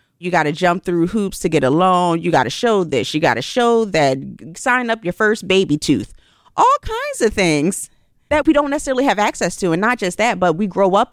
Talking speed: 245 wpm